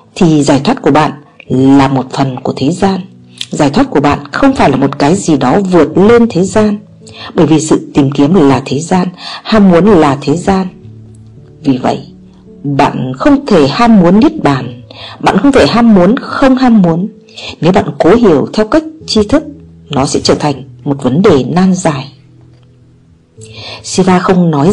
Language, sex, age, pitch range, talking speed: Vietnamese, female, 50-69, 140-210 Hz, 185 wpm